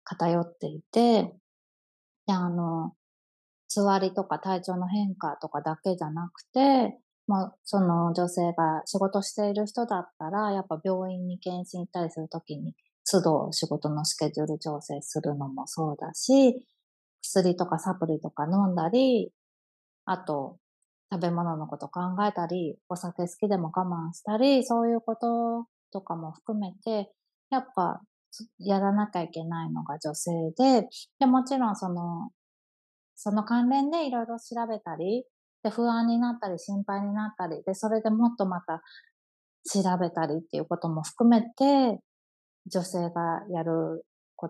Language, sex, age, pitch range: Japanese, female, 20-39, 165-220 Hz